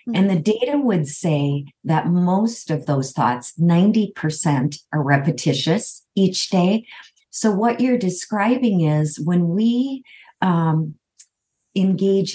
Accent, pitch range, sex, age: American, 150-195 Hz, female, 50-69